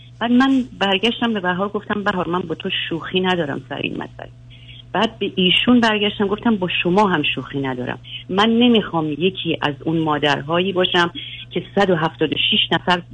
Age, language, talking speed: 50-69, Persian, 160 wpm